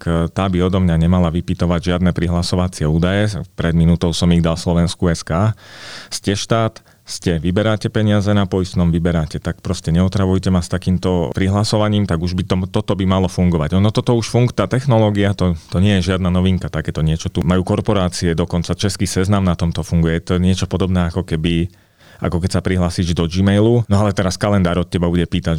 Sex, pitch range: male, 85-100 Hz